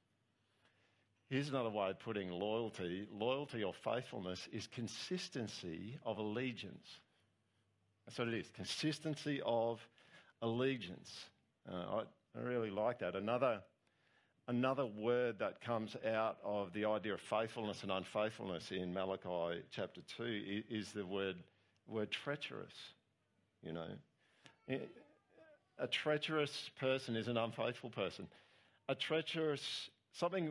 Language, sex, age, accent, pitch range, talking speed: English, male, 50-69, Australian, 105-140 Hz, 120 wpm